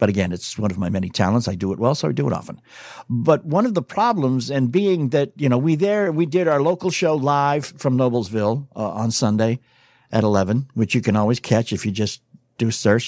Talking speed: 240 wpm